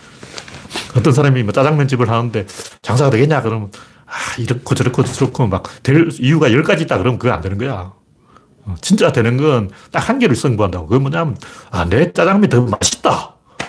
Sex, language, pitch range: male, Korean, 110-160 Hz